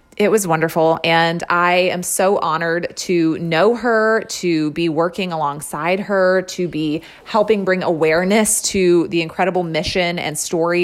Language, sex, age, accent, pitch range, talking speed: English, female, 20-39, American, 170-215 Hz, 150 wpm